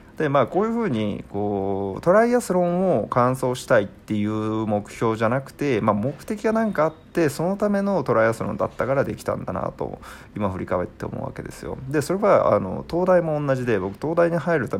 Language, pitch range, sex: Japanese, 105-170 Hz, male